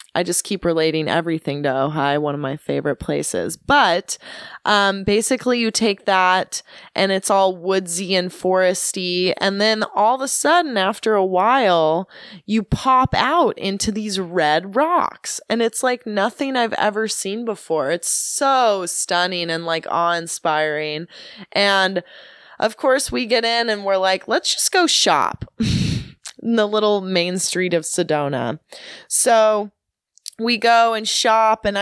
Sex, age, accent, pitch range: female, 20-39, American, 170-230 Hz